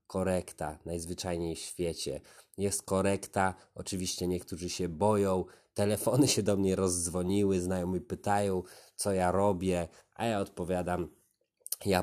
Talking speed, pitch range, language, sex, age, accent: 120 wpm, 90-100 Hz, Polish, male, 20-39, native